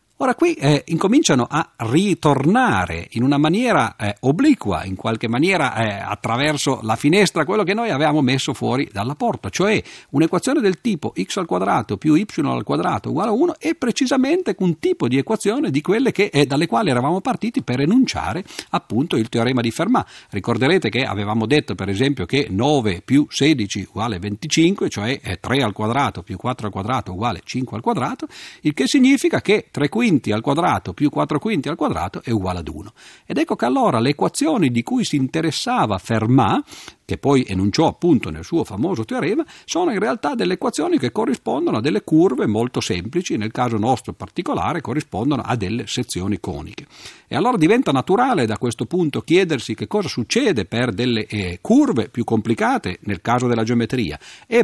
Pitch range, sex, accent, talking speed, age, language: 110-175 Hz, male, native, 180 wpm, 50-69, Italian